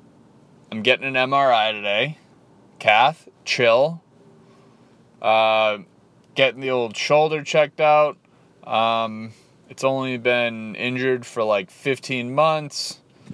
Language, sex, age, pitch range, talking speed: English, male, 30-49, 120-145 Hz, 100 wpm